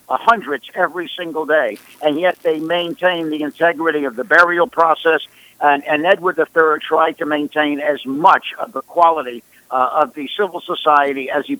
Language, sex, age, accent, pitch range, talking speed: English, male, 60-79, American, 150-180 Hz, 180 wpm